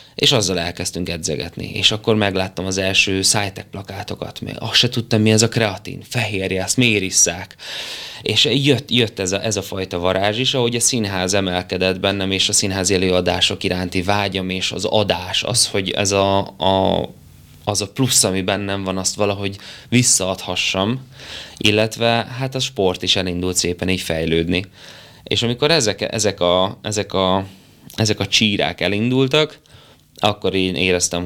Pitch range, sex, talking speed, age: 90-105 Hz, male, 155 wpm, 20-39